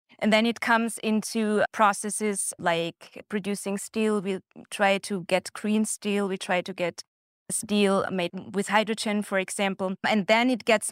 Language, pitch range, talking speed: English, 185-210 Hz, 160 wpm